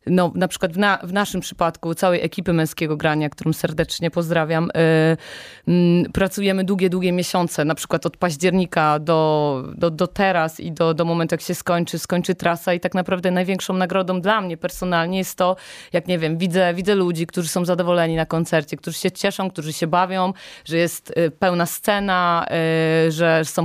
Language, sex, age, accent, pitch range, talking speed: Polish, female, 30-49, native, 160-180 Hz, 185 wpm